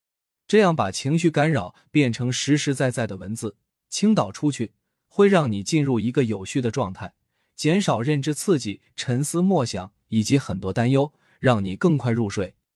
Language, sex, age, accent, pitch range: Chinese, male, 20-39, native, 110-160 Hz